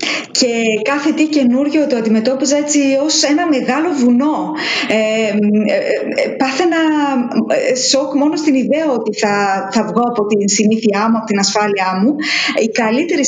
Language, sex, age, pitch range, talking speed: Greek, female, 20-39, 230-325 Hz, 145 wpm